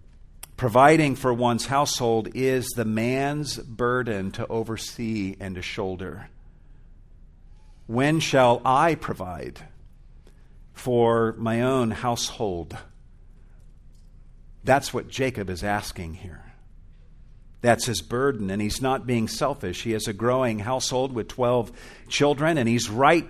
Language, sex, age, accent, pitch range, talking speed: English, male, 50-69, American, 100-130 Hz, 120 wpm